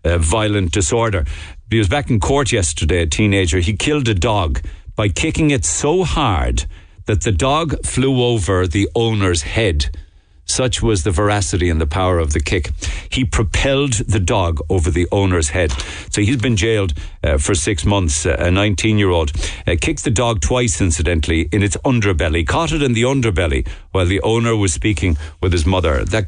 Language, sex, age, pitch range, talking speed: English, male, 60-79, 80-110 Hz, 185 wpm